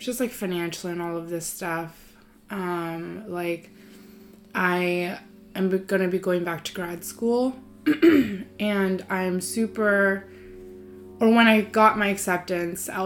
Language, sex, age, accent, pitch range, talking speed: English, female, 20-39, American, 170-195 Hz, 135 wpm